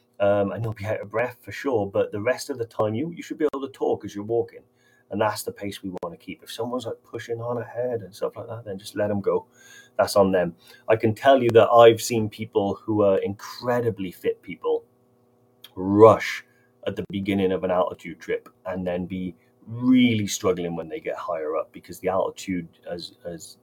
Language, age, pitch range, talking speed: English, 30-49, 100-130 Hz, 220 wpm